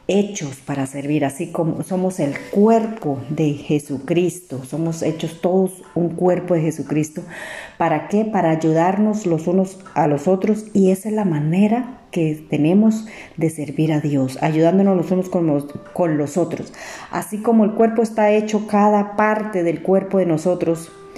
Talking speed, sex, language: 160 wpm, female, Spanish